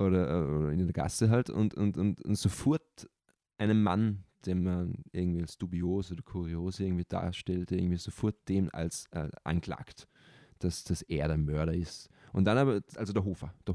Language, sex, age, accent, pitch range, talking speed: German, male, 20-39, German, 90-110 Hz, 175 wpm